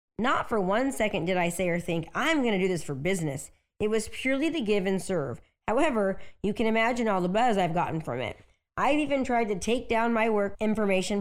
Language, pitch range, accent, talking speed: English, 180-250 Hz, American, 230 wpm